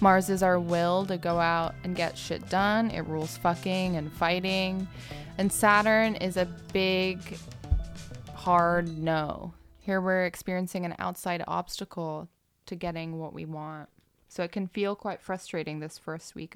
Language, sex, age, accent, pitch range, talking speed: English, female, 20-39, American, 160-185 Hz, 155 wpm